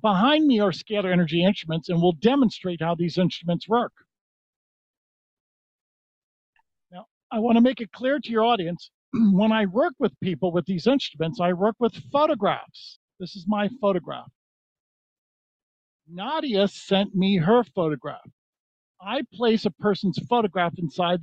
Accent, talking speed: American, 140 wpm